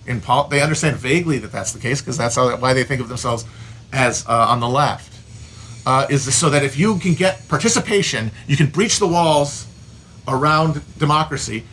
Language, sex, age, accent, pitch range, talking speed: English, male, 40-59, American, 115-170 Hz, 195 wpm